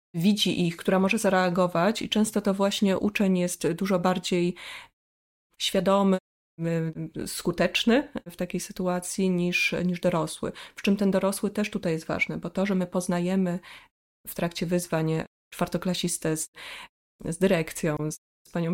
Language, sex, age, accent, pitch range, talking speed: Polish, female, 20-39, native, 170-195 Hz, 140 wpm